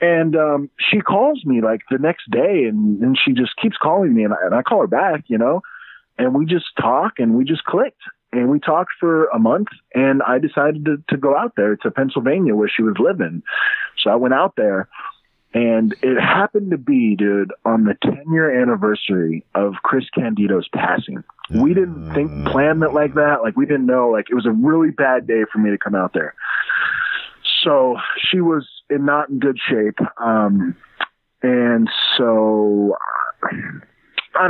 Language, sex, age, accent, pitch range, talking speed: English, male, 30-49, American, 105-155 Hz, 190 wpm